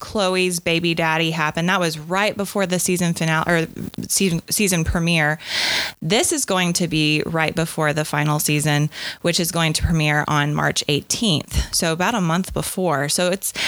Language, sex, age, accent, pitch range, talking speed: English, female, 20-39, American, 155-190 Hz, 175 wpm